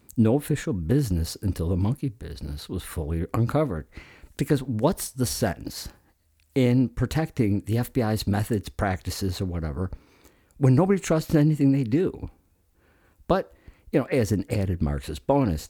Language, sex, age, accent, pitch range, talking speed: English, male, 50-69, American, 85-120 Hz, 140 wpm